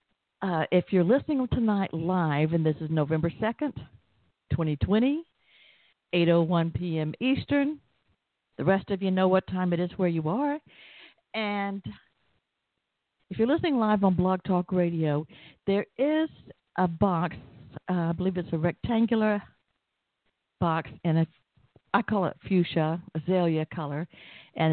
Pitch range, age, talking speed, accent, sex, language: 160-210 Hz, 60-79, 135 wpm, American, female, English